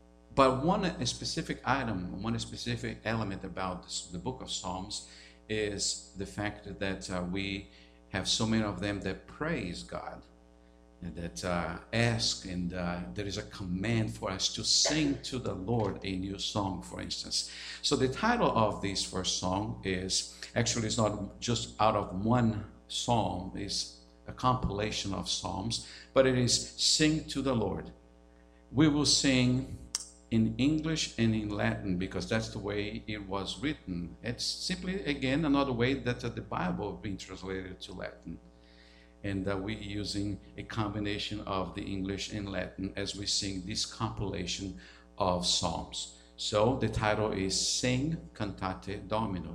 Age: 50-69